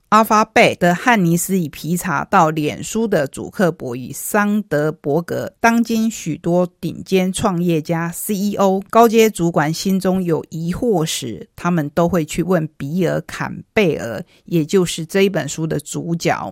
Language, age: Chinese, 50-69